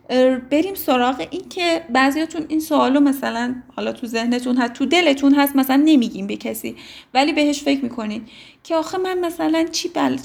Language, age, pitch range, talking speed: Persian, 30-49, 245-300 Hz, 170 wpm